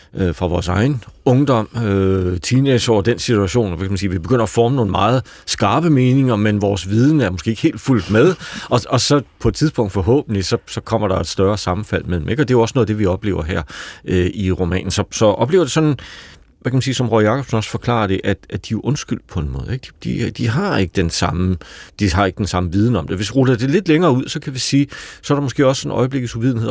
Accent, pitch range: native, 95-125 Hz